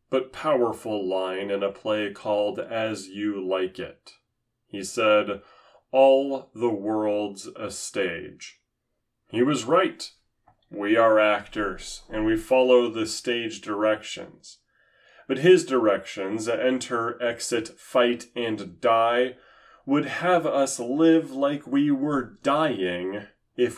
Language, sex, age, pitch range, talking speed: English, male, 30-49, 105-140 Hz, 120 wpm